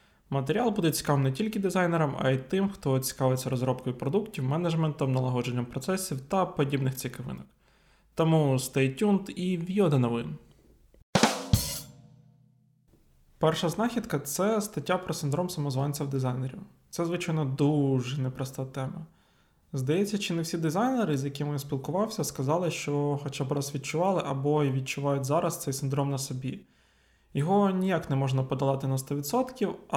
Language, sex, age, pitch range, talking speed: Ukrainian, male, 20-39, 135-170 Hz, 140 wpm